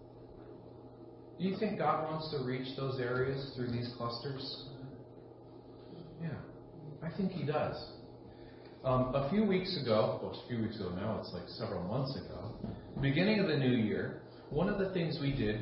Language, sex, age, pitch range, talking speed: English, male, 40-59, 95-120 Hz, 175 wpm